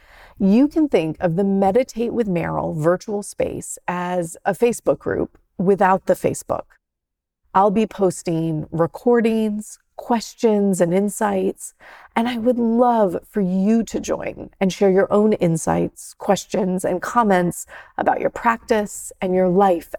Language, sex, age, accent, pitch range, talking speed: English, female, 30-49, American, 180-225 Hz, 140 wpm